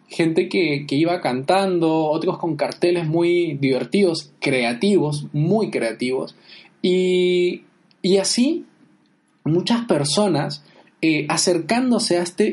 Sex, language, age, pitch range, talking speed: male, Spanish, 20-39, 150-195 Hz, 105 wpm